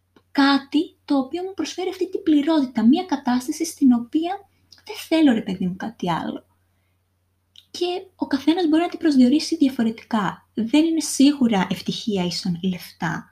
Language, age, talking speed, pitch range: Greek, 20-39, 150 wpm, 185-260 Hz